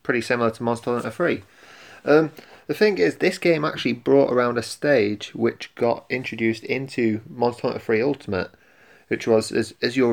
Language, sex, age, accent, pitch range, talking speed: English, male, 20-39, British, 115-130 Hz, 180 wpm